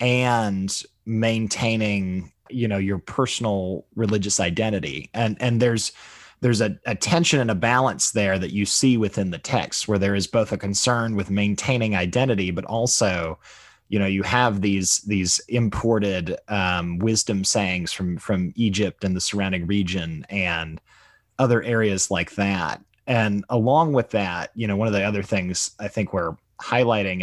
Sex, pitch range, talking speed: male, 95-115 Hz, 160 wpm